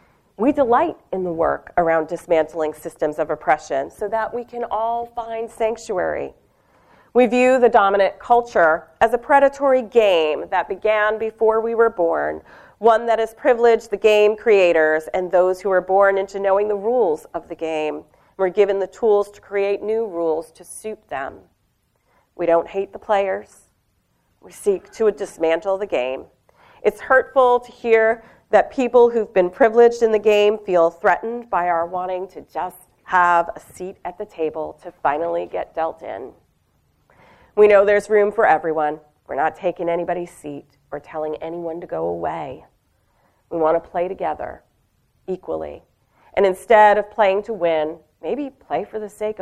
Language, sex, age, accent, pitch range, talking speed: English, female, 40-59, American, 160-225 Hz, 165 wpm